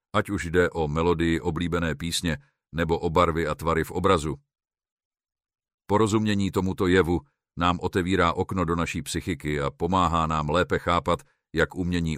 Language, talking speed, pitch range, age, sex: Czech, 150 wpm, 75-90 Hz, 50-69, male